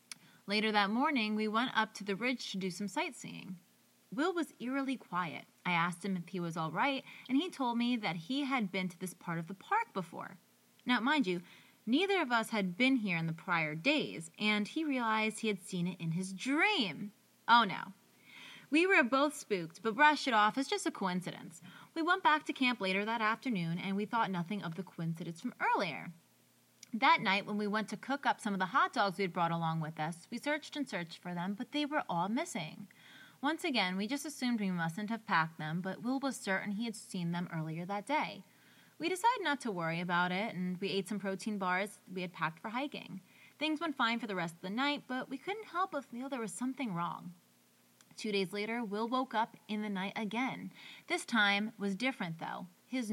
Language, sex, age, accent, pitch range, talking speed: English, female, 20-39, American, 185-260 Hz, 225 wpm